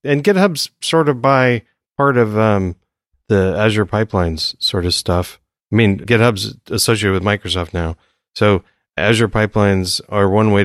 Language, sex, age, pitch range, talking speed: English, male, 30-49, 90-110 Hz, 150 wpm